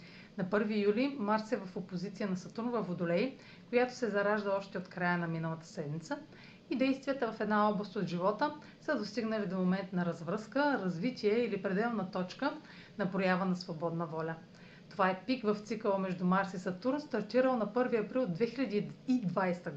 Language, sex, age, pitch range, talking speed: Bulgarian, female, 40-59, 185-235 Hz, 170 wpm